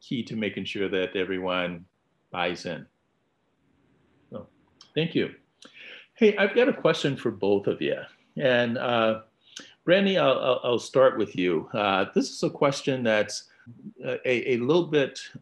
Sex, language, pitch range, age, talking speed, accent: male, English, 95-125 Hz, 50-69, 145 wpm, American